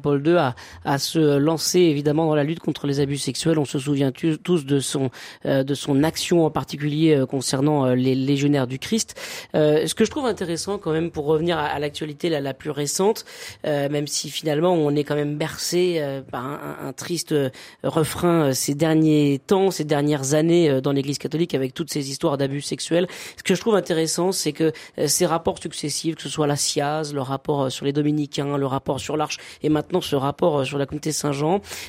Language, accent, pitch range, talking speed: French, French, 145-170 Hz, 195 wpm